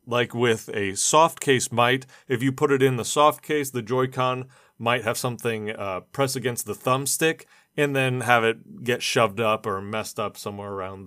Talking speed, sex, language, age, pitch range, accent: 200 wpm, male, English, 30-49, 115-150 Hz, American